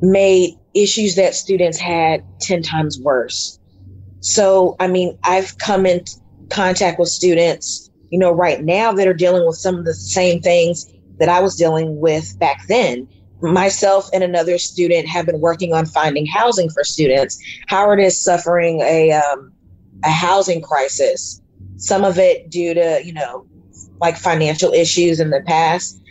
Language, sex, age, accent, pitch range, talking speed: English, female, 30-49, American, 150-185 Hz, 160 wpm